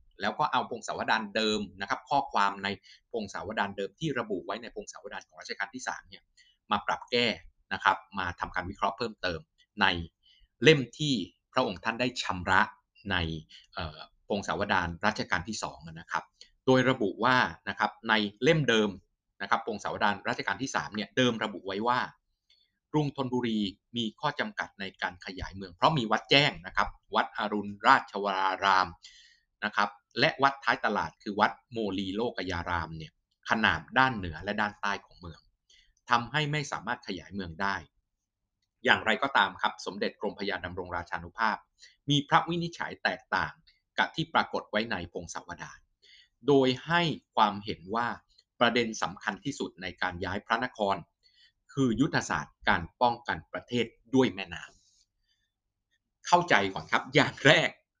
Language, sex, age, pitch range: Thai, male, 20-39, 95-125 Hz